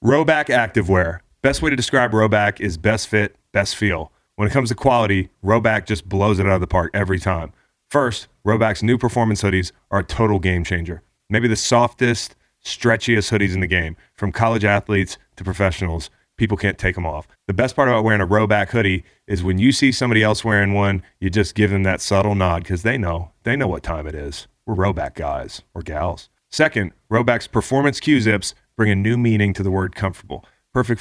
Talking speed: 205 wpm